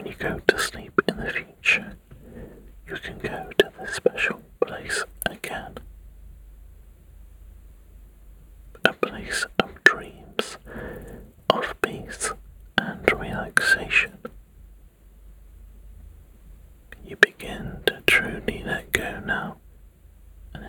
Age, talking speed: 40-59, 95 wpm